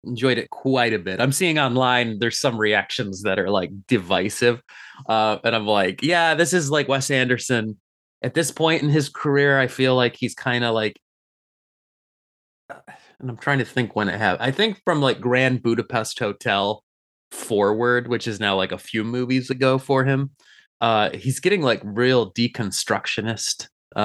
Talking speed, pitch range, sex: 175 wpm, 105-135 Hz, male